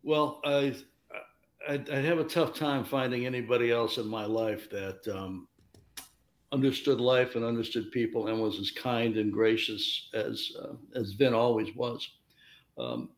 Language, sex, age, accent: English, male, 60-79, American